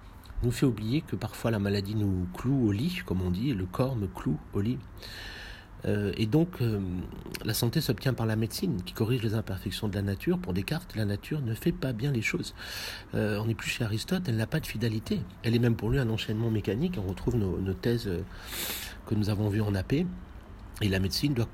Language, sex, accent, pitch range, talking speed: French, male, French, 100-125 Hz, 230 wpm